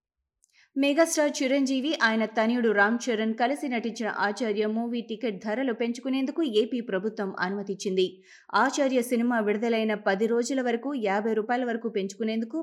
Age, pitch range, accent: 20-39, 205-270 Hz, native